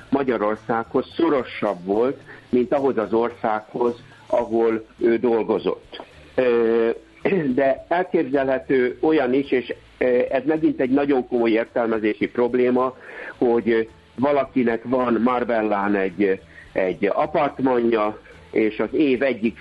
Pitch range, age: 105-130 Hz, 60-79